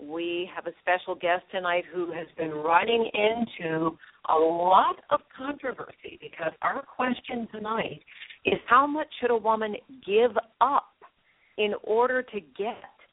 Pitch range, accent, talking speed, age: 165-225 Hz, American, 140 wpm, 50-69